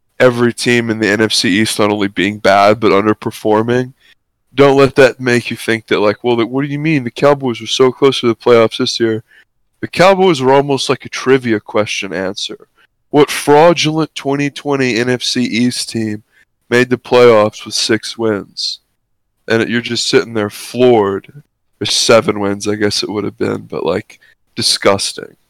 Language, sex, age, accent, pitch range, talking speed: English, male, 20-39, American, 110-135 Hz, 175 wpm